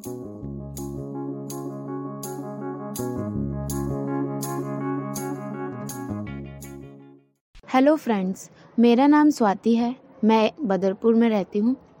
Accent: Indian